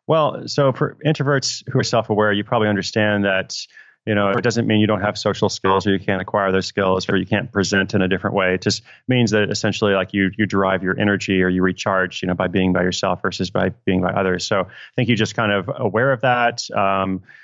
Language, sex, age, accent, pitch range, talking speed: English, male, 30-49, American, 95-110 Hz, 245 wpm